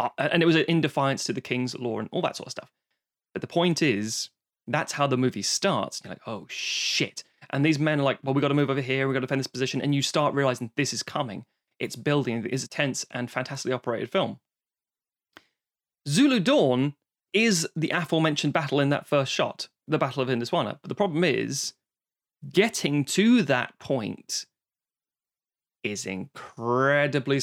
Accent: British